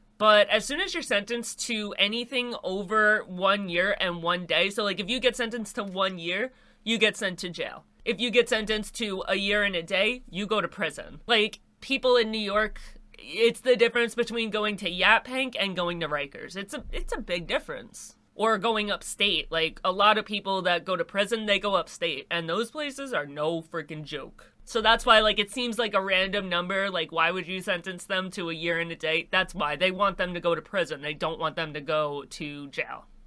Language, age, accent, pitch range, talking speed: English, 30-49, American, 185-240 Hz, 225 wpm